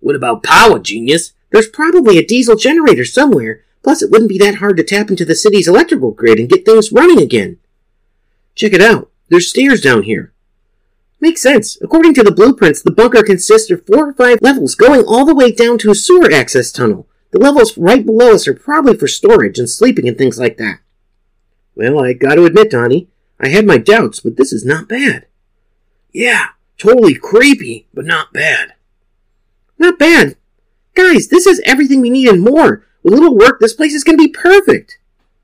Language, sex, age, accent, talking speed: English, male, 40-59, American, 195 wpm